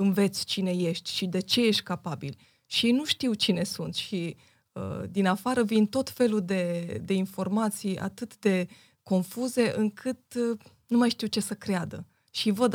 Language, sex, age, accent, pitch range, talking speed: Romanian, female, 20-39, native, 185-220 Hz, 170 wpm